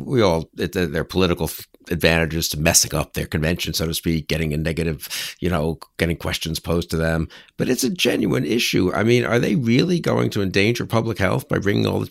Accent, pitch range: American, 80-105 Hz